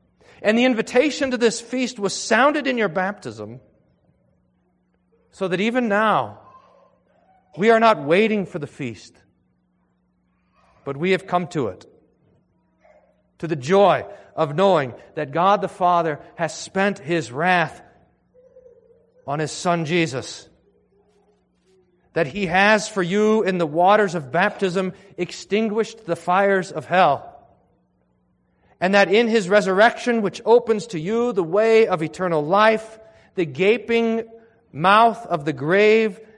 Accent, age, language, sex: American, 40-59, English, male